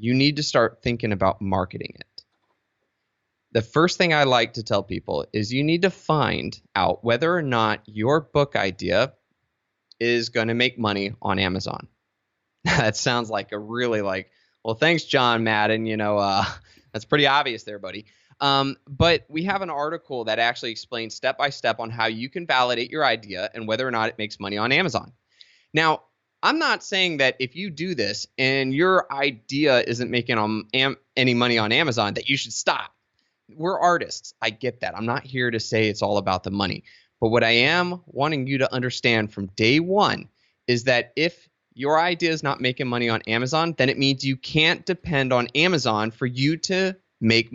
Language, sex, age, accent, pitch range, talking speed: English, male, 20-39, American, 110-155 Hz, 190 wpm